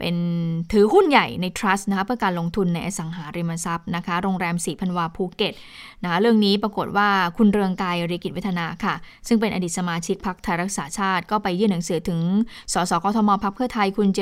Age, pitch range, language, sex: 20-39, 175-215 Hz, Thai, female